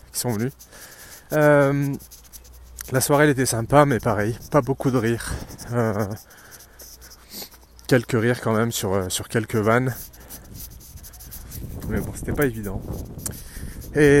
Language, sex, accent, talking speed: French, male, French, 125 wpm